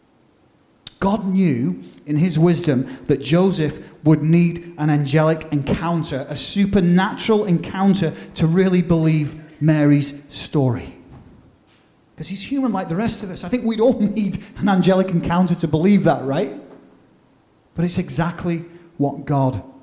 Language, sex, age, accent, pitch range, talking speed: English, male, 30-49, British, 145-190 Hz, 135 wpm